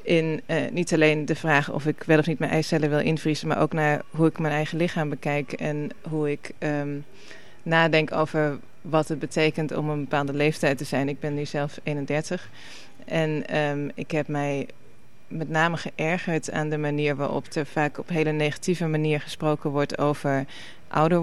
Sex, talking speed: female, 180 wpm